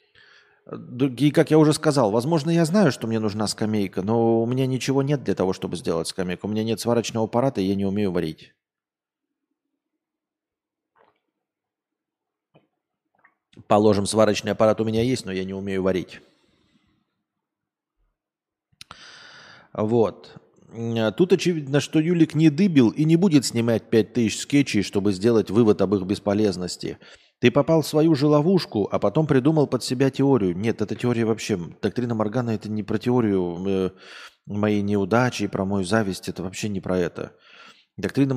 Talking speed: 150 wpm